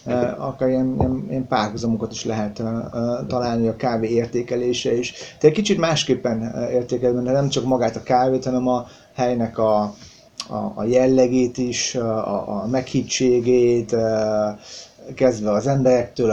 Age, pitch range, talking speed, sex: 30-49, 115-130 Hz, 145 wpm, male